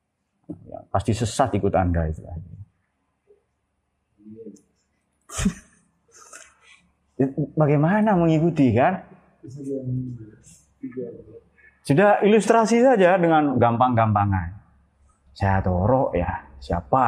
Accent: native